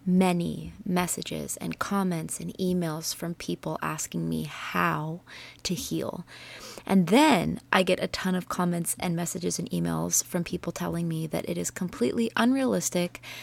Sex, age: female, 20-39